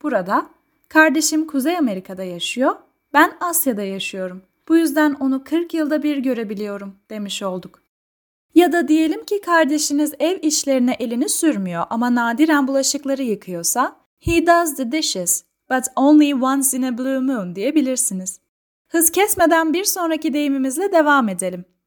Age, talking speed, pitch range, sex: 10-29, 135 wpm, 220-315 Hz, female